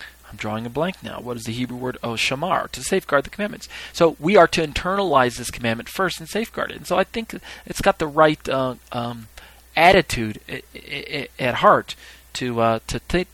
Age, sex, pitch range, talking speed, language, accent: 40-59, male, 110-150 Hz, 200 wpm, English, American